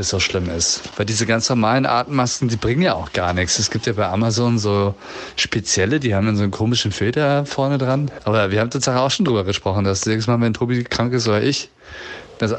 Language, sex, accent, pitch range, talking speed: German, male, German, 100-120 Hz, 230 wpm